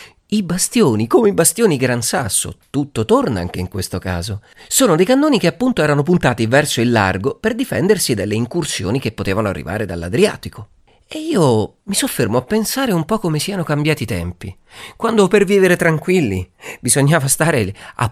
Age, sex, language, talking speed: 30-49, male, Italian, 170 wpm